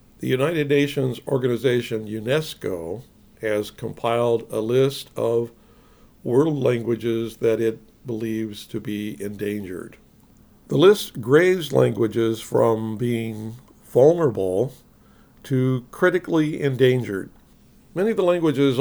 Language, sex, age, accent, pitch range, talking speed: English, male, 60-79, American, 115-140 Hz, 100 wpm